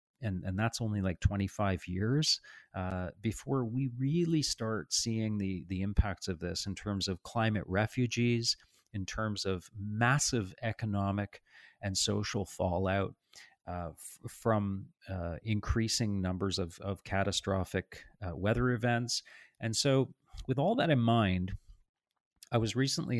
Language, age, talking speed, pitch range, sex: English, 40-59, 135 wpm, 95-115 Hz, male